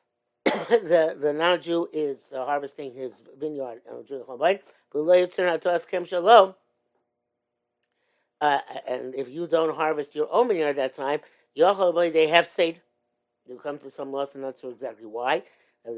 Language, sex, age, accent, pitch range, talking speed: English, male, 50-69, American, 145-180 Hz, 130 wpm